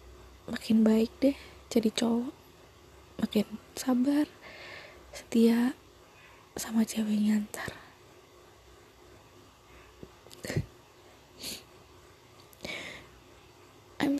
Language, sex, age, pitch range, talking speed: Indonesian, female, 20-39, 220-260 Hz, 50 wpm